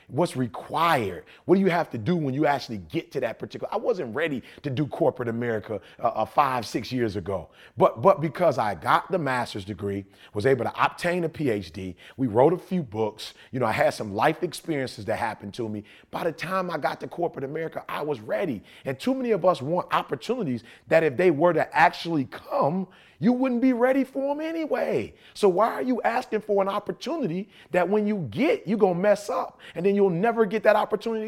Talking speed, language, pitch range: 215 wpm, English, 135-210 Hz